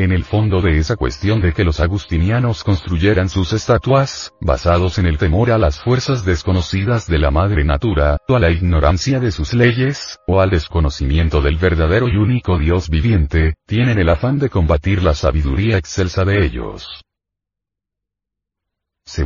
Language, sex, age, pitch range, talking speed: Spanish, male, 40-59, 85-110 Hz, 160 wpm